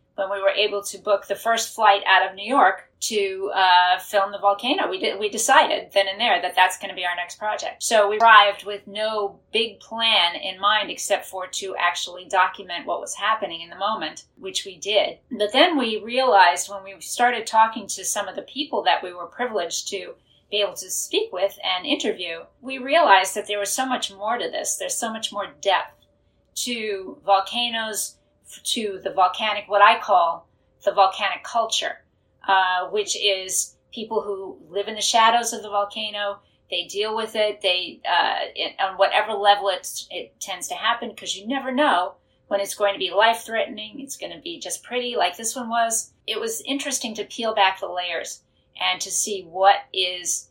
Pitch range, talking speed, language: 190-230 Hz, 195 wpm, English